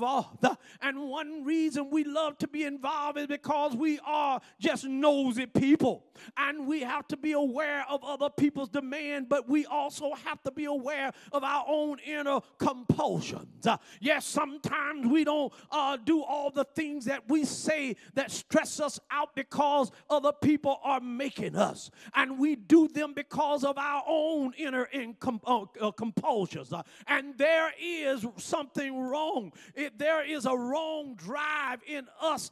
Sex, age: male, 40-59